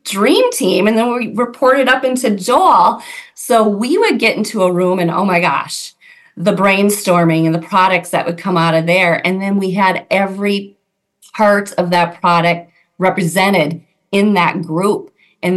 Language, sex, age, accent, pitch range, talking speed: English, female, 30-49, American, 170-220 Hz, 175 wpm